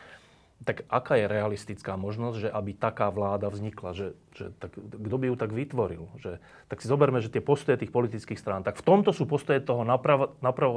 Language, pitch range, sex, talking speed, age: Slovak, 105-140 Hz, male, 200 wpm, 30-49